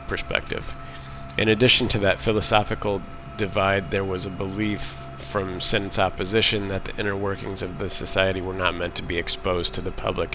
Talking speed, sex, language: 175 wpm, male, English